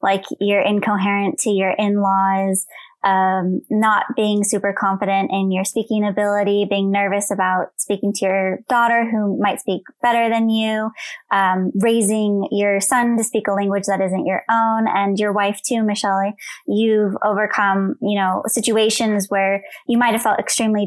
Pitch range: 195-215 Hz